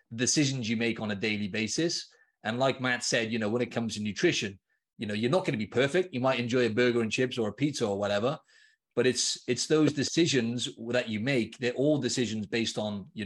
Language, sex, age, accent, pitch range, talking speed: English, male, 30-49, British, 110-135 Hz, 235 wpm